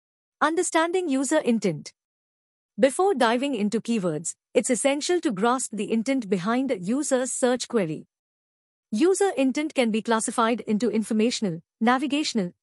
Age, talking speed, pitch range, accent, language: 50-69, 125 wpm, 210-280 Hz, Indian, English